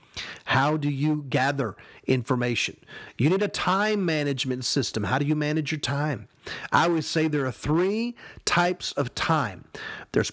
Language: English